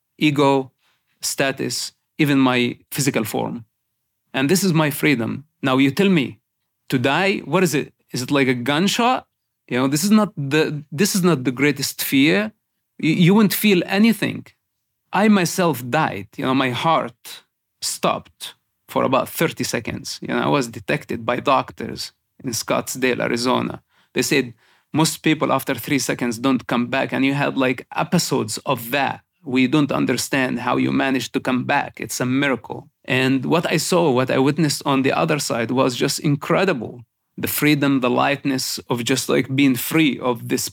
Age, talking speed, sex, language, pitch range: 30-49, 175 wpm, male, English, 125-155 Hz